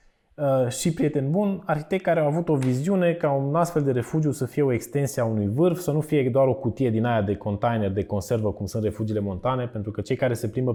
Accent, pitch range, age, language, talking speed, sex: native, 120-155 Hz, 20-39, Romanian, 240 wpm, male